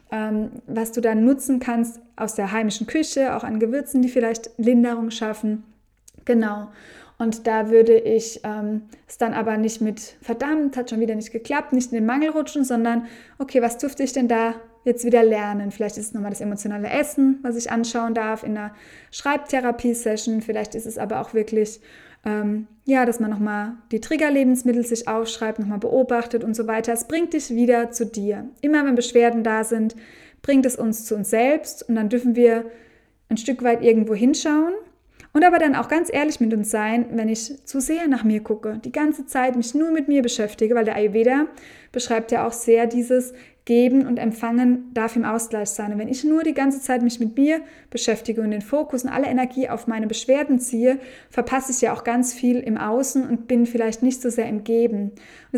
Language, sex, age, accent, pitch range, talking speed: German, female, 20-39, German, 225-260 Hz, 200 wpm